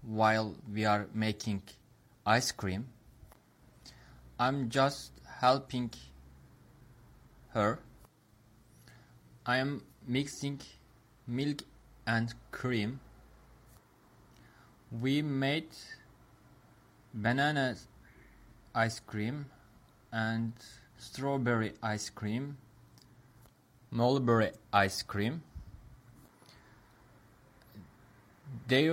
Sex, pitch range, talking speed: male, 110-135 Hz, 60 wpm